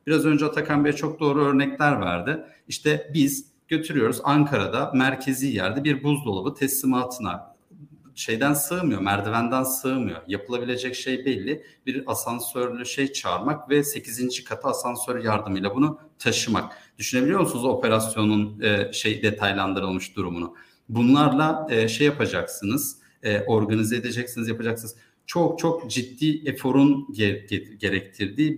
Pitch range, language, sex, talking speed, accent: 110-140 Hz, Turkish, male, 110 wpm, native